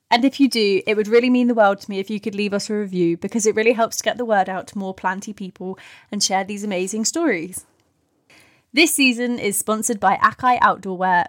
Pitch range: 200-235 Hz